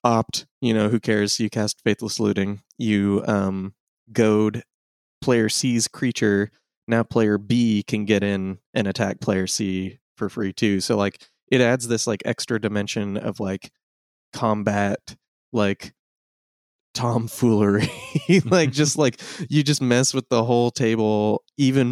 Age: 20-39